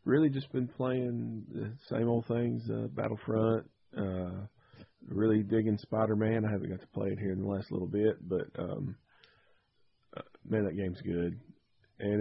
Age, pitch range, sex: 40-59, 95-110 Hz, male